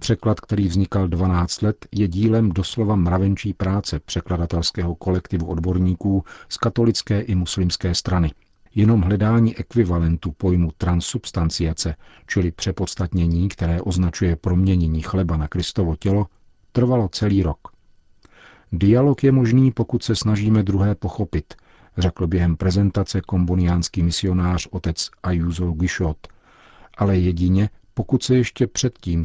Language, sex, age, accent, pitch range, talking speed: Czech, male, 50-69, native, 85-105 Hz, 115 wpm